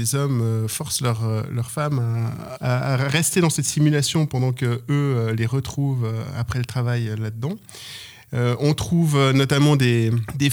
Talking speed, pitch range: 155 wpm, 120-145 Hz